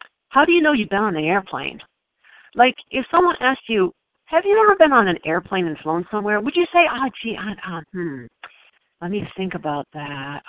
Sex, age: female, 50-69